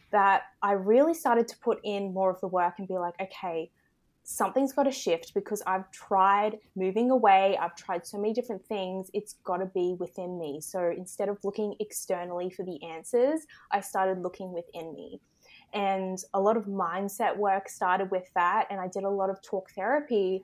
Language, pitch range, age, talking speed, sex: English, 190-225 Hz, 20-39, 195 wpm, female